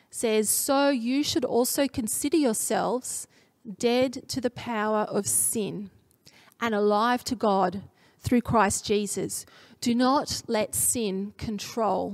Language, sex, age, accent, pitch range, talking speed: English, female, 30-49, Australian, 215-265 Hz, 125 wpm